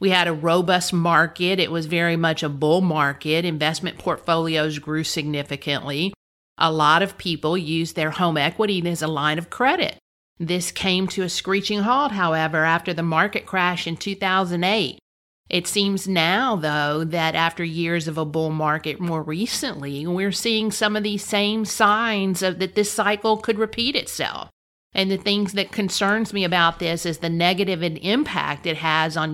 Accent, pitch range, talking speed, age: American, 160-195 Hz, 170 wpm, 50-69